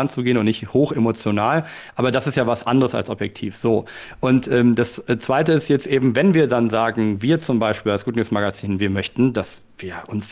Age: 40-59